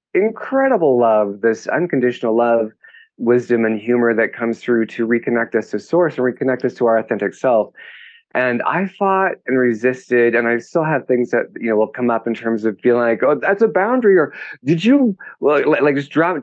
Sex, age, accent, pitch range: male, 30-49, American, 115-155 Hz